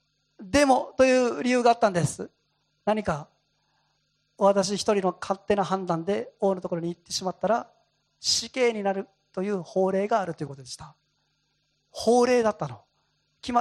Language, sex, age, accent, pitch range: Japanese, male, 40-59, native, 190-285 Hz